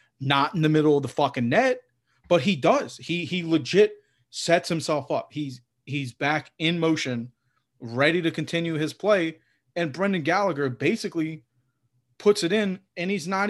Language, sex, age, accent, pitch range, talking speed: English, male, 30-49, American, 125-170 Hz, 165 wpm